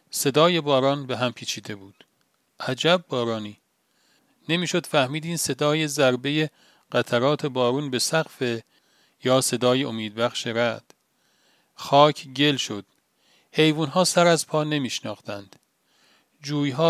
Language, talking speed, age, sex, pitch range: Persian, 105 wpm, 40-59, male, 120-150 Hz